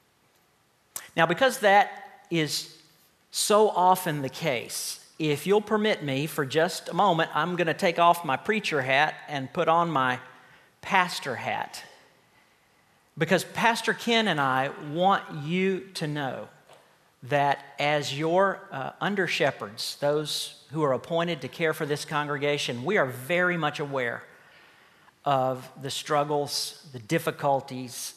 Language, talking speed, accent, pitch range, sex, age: English, 135 wpm, American, 135-165 Hz, male, 50-69